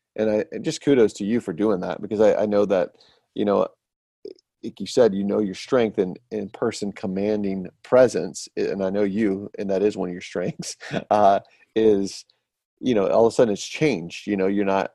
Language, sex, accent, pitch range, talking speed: English, male, American, 95-110 Hz, 215 wpm